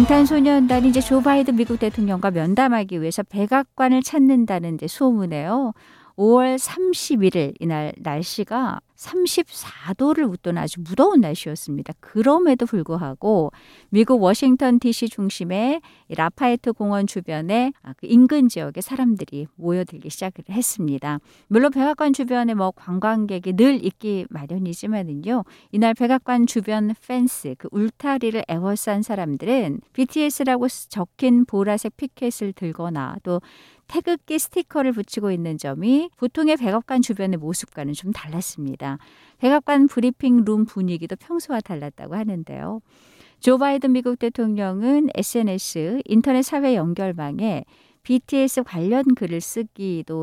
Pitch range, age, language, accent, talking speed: 180-255 Hz, 50-69, English, Korean, 100 wpm